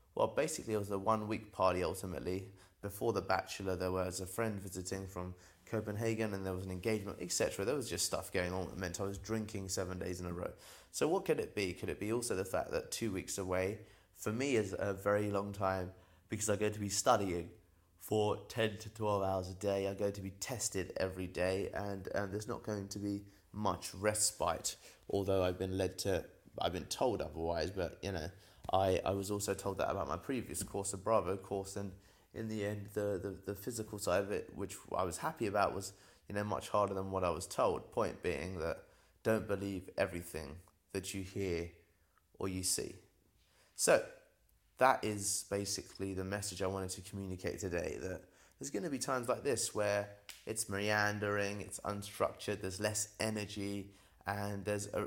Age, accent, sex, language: 20-39, British, male, English